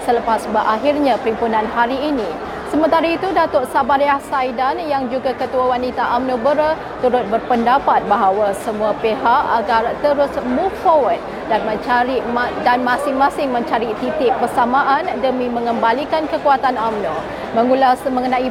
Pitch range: 235-290 Hz